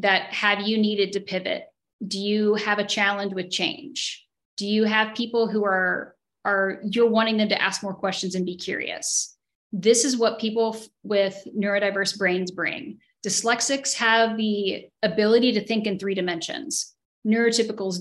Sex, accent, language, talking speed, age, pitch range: female, American, English, 165 wpm, 10-29, 195-230 Hz